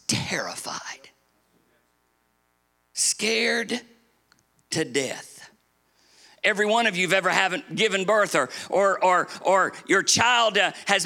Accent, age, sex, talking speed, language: American, 50-69, male, 105 wpm, English